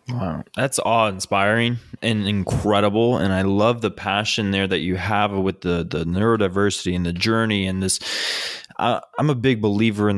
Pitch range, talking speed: 95-110 Hz, 175 wpm